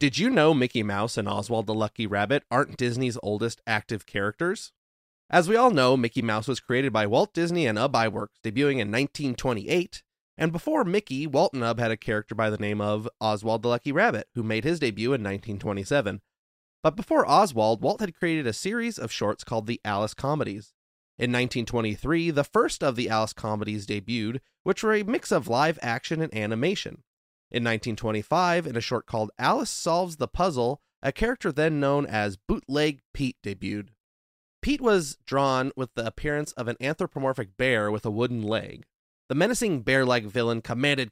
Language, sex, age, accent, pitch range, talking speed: English, male, 30-49, American, 110-150 Hz, 180 wpm